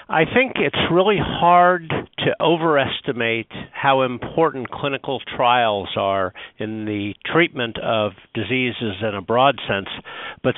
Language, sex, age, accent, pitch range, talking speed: English, male, 50-69, American, 110-145 Hz, 125 wpm